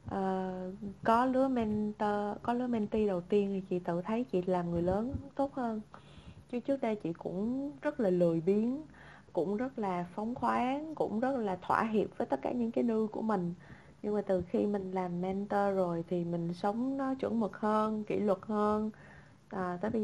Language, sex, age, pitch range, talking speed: Vietnamese, female, 20-39, 180-220 Hz, 200 wpm